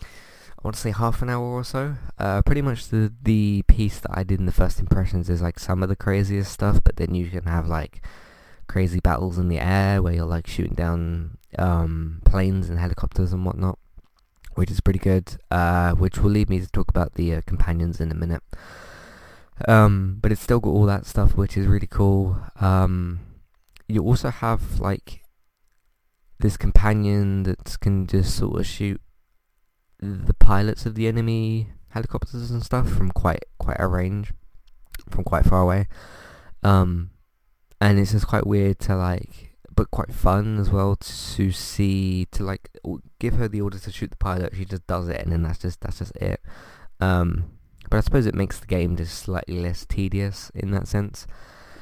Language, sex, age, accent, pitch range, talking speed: English, male, 20-39, British, 90-105 Hz, 190 wpm